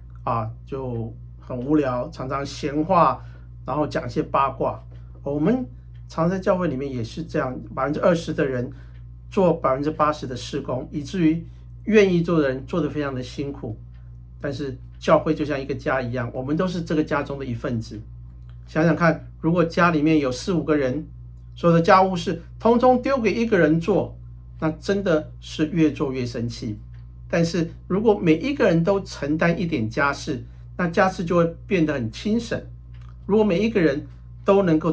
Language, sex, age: Chinese, male, 50-69